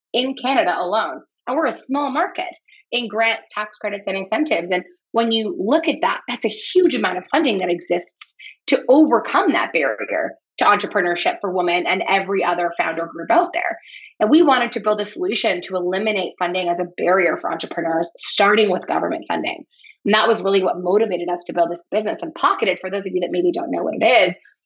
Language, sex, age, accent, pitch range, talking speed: English, female, 20-39, American, 180-255 Hz, 210 wpm